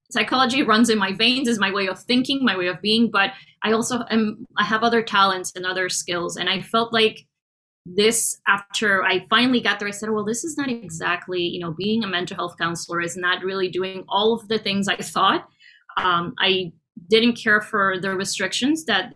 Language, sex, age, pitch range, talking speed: English, female, 20-39, 185-235 Hz, 210 wpm